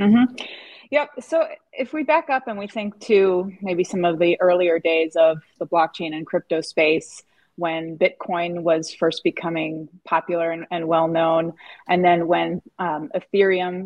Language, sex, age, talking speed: English, female, 20-39, 170 wpm